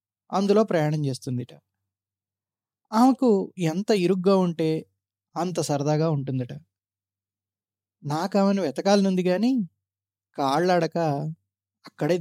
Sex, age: male, 20-39